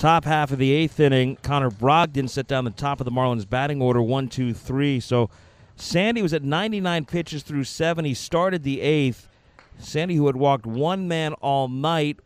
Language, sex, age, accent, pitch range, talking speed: English, male, 50-69, American, 125-170 Hz, 195 wpm